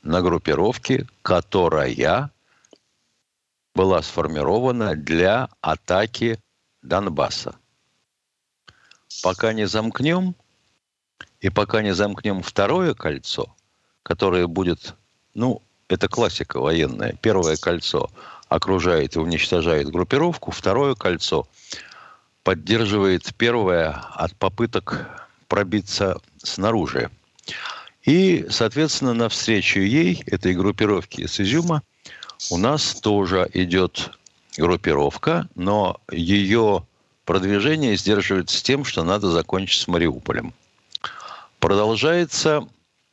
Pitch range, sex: 95-115 Hz, male